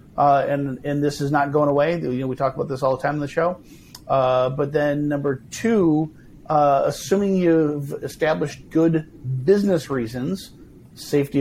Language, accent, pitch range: English, American, 135-155 Hz